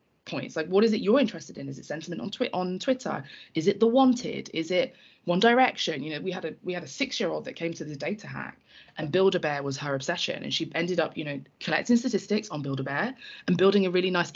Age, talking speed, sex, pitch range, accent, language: 20-39, 250 wpm, female, 155-210 Hz, British, English